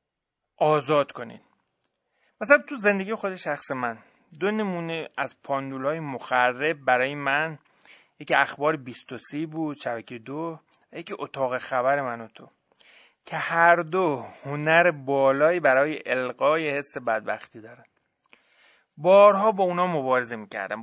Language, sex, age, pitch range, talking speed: Persian, male, 30-49, 135-175 Hz, 125 wpm